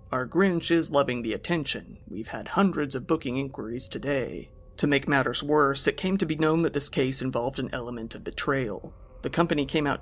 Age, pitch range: 40-59, 130-165 Hz